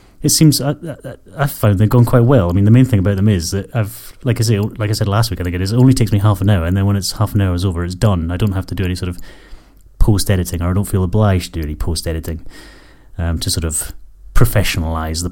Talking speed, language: 290 wpm, English